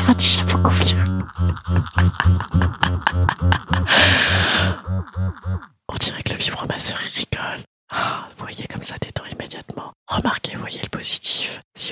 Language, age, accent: French, 30-49, French